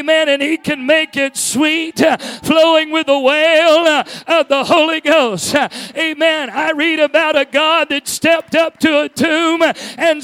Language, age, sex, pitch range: English, 40-59, male, 280-325 Hz